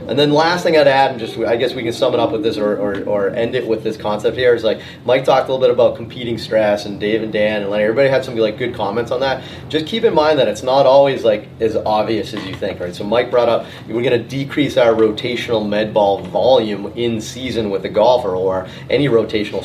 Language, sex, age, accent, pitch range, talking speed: English, male, 30-49, American, 105-135 Hz, 265 wpm